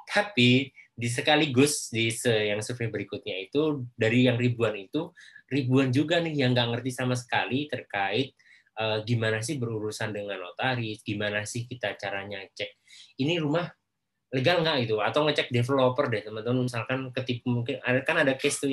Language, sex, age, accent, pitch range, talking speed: Indonesian, male, 20-39, native, 115-140 Hz, 160 wpm